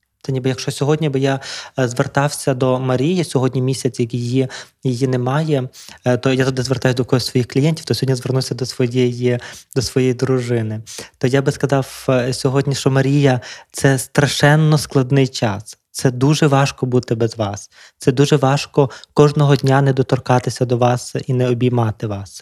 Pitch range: 125-135 Hz